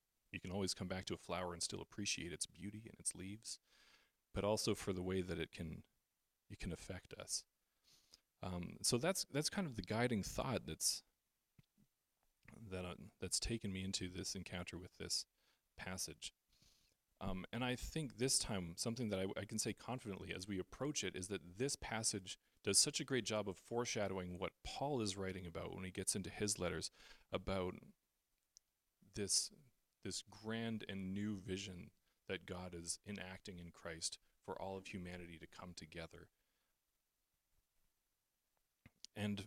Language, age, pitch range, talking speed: English, 40-59, 90-115 Hz, 165 wpm